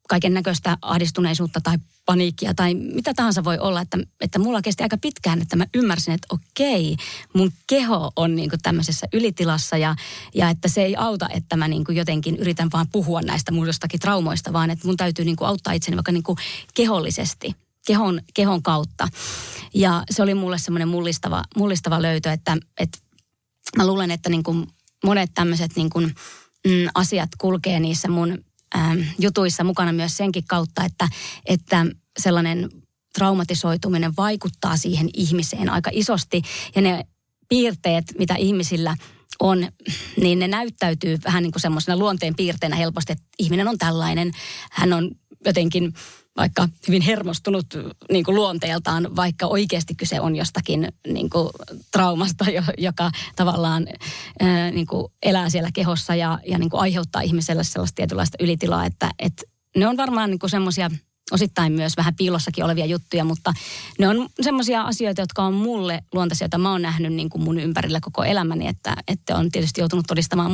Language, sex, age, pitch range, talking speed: Finnish, female, 20-39, 165-190 Hz, 150 wpm